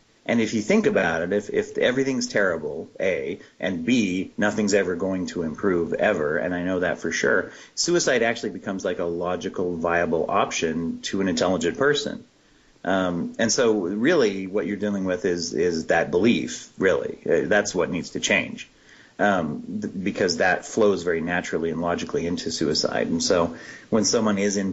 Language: English